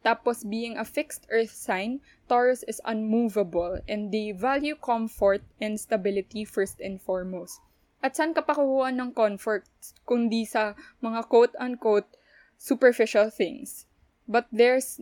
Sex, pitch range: female, 210-250 Hz